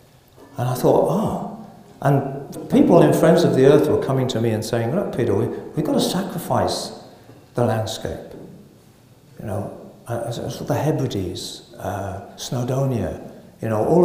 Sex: male